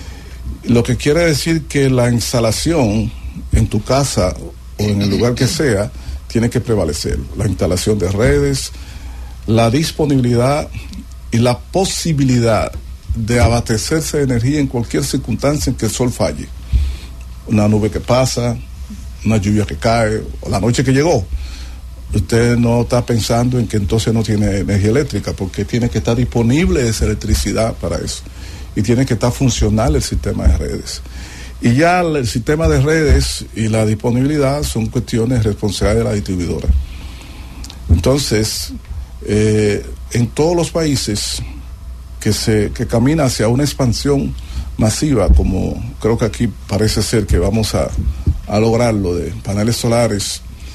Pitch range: 85-125 Hz